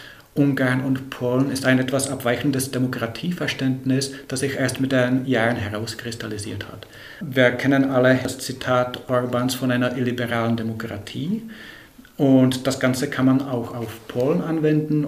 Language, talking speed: German, 140 wpm